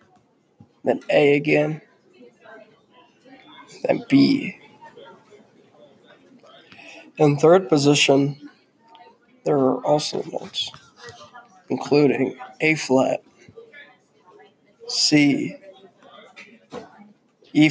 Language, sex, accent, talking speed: English, male, American, 60 wpm